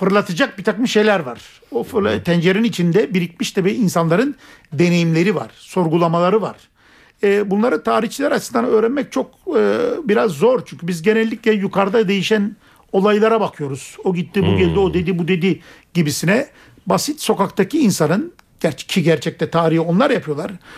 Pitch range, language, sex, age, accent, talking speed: 170-220 Hz, Turkish, male, 50-69, native, 135 wpm